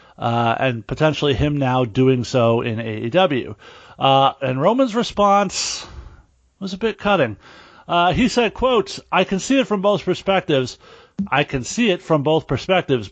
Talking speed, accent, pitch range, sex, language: 160 wpm, American, 135-180 Hz, male, English